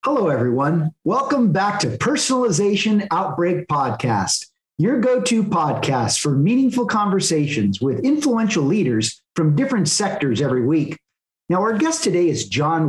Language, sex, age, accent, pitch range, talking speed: English, male, 40-59, American, 135-205 Hz, 130 wpm